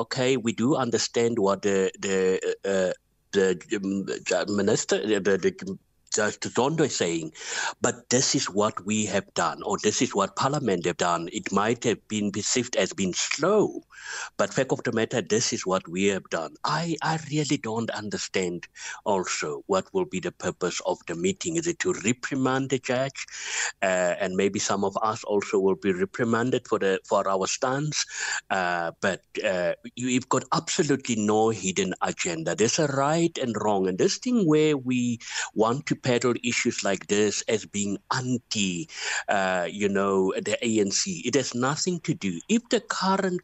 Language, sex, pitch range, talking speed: English, male, 100-145 Hz, 175 wpm